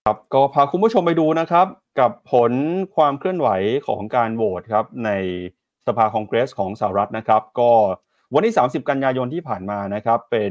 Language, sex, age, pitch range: Thai, male, 30-49, 105-135 Hz